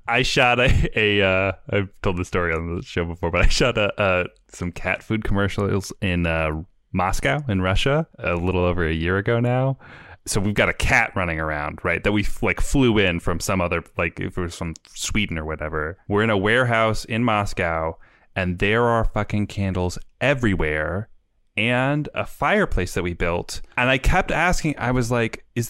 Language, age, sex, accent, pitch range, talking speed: English, 10-29, male, American, 95-140 Hz, 200 wpm